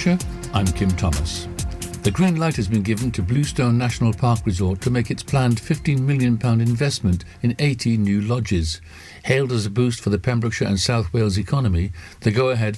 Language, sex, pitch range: English, male, 95-120 Hz